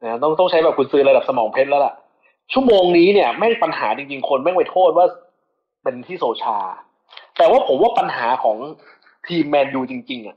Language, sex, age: Thai, male, 20-39